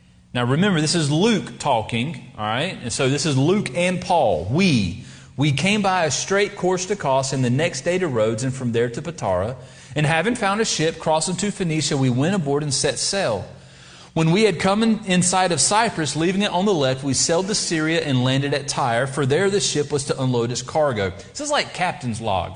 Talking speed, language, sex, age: 225 wpm, English, male, 30-49